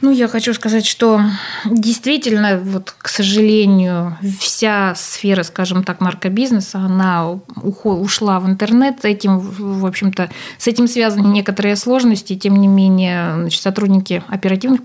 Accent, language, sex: native, Russian, female